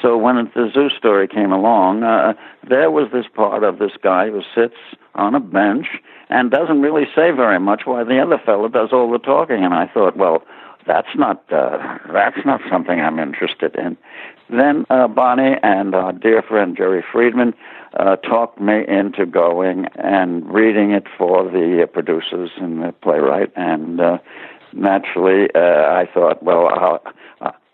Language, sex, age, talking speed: English, male, 60-79, 175 wpm